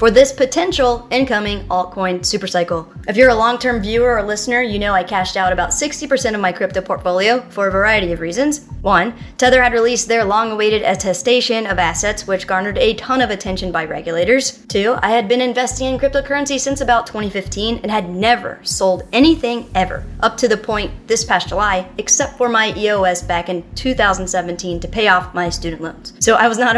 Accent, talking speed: American, 195 wpm